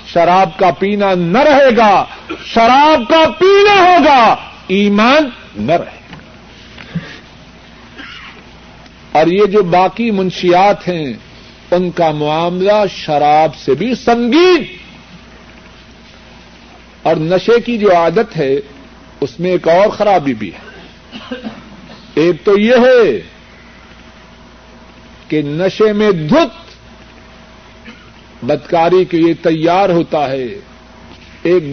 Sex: male